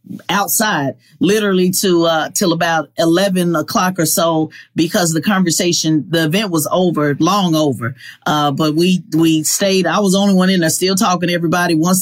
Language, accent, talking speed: English, American, 180 wpm